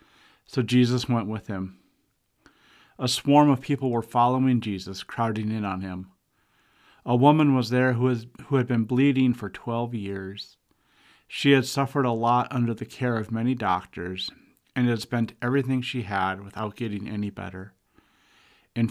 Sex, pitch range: male, 105-130 Hz